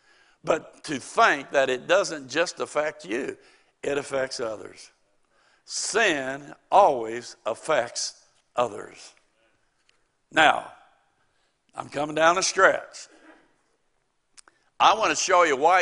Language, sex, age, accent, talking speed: English, male, 60-79, American, 105 wpm